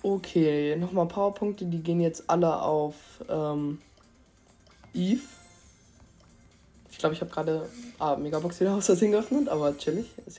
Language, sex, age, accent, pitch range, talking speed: German, female, 20-39, German, 155-185 Hz, 135 wpm